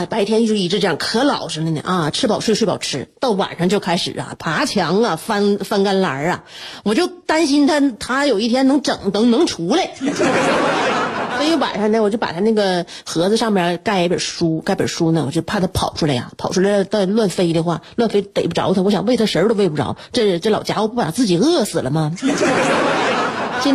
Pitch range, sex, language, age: 185-270 Hz, female, Chinese, 30-49